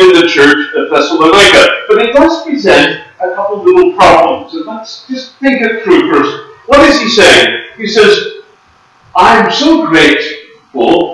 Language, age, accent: English, 50-69, American